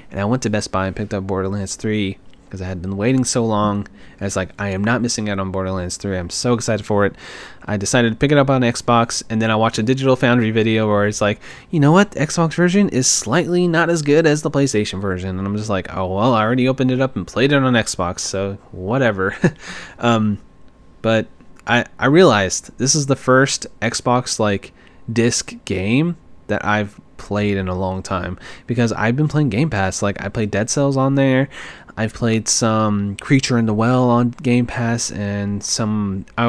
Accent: American